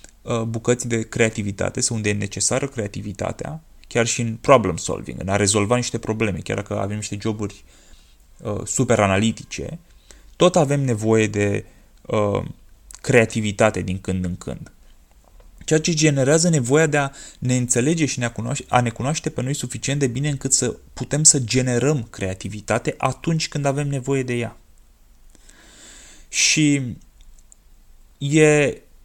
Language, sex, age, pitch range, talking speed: Romanian, male, 20-39, 105-145 Hz, 130 wpm